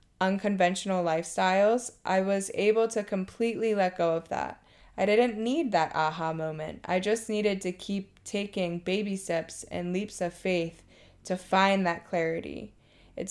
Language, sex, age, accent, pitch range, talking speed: English, female, 20-39, American, 170-195 Hz, 155 wpm